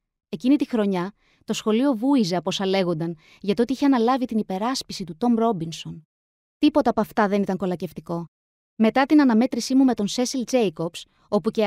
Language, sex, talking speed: Greek, female, 180 wpm